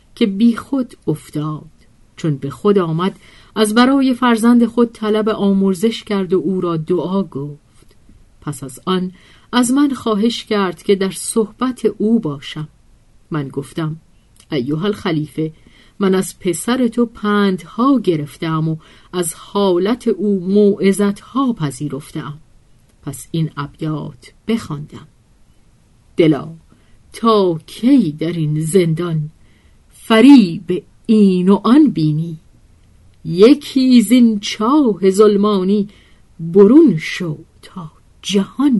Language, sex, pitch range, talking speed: Persian, female, 155-220 Hz, 110 wpm